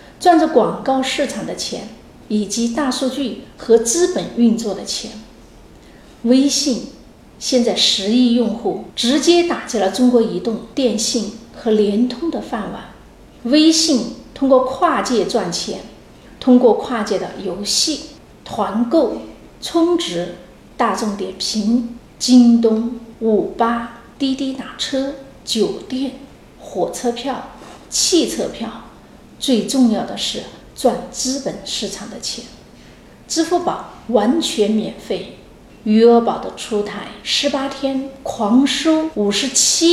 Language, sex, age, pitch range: Chinese, female, 40-59, 220-275 Hz